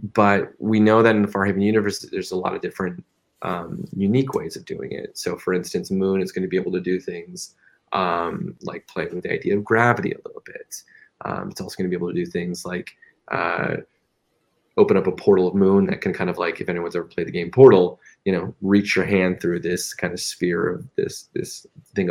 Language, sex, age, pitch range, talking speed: English, male, 20-39, 95-120 Hz, 235 wpm